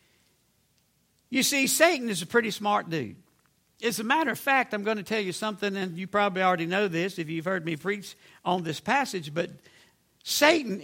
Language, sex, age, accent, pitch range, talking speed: English, male, 60-79, American, 200-265 Hz, 195 wpm